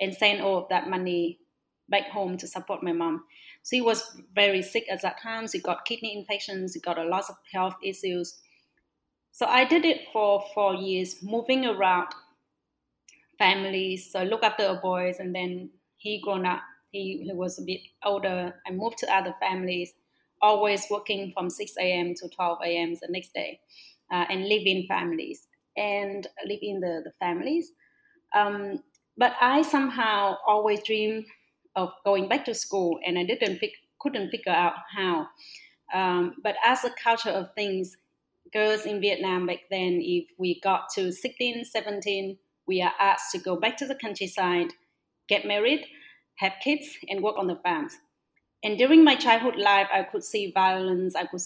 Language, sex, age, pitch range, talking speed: English, female, 30-49, 185-225 Hz, 175 wpm